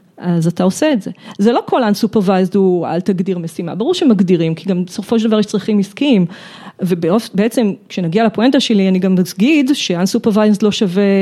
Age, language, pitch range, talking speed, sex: 40-59, Hebrew, 185-235 Hz, 175 wpm, female